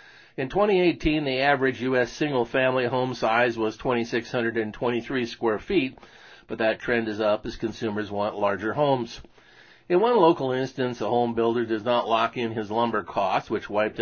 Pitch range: 110-130 Hz